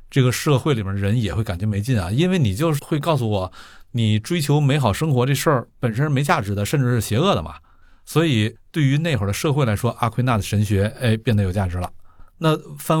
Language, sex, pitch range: Chinese, male, 105-135 Hz